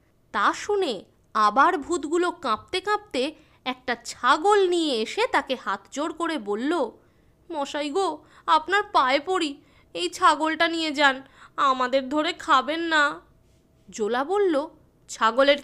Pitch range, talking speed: 255-355 Hz, 115 wpm